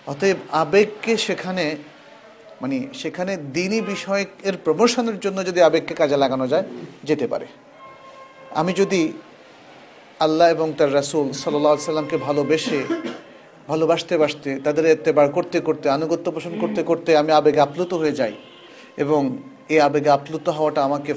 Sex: male